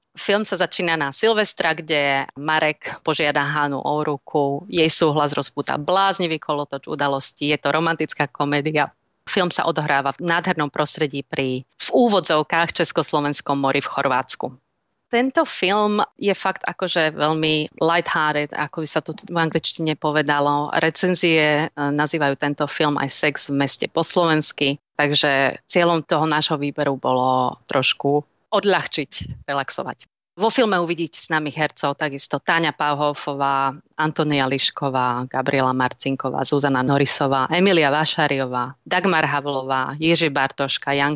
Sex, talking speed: female, 130 wpm